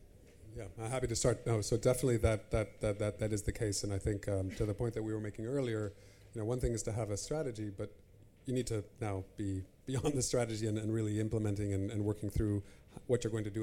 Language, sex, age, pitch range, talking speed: English, male, 30-49, 105-120 Hz, 265 wpm